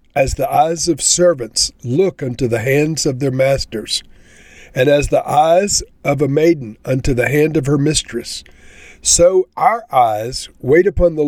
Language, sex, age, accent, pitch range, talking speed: English, male, 50-69, American, 120-170 Hz, 165 wpm